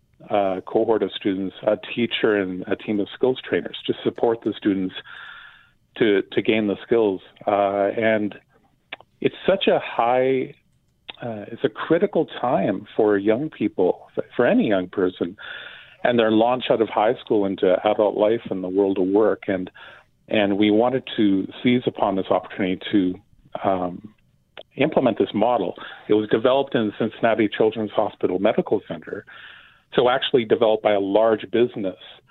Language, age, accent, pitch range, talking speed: English, 40-59, American, 100-120 Hz, 160 wpm